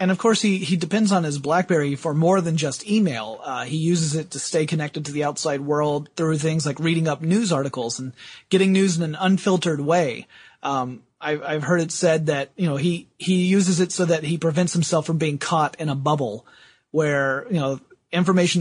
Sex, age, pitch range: male, 30-49, 145-180 Hz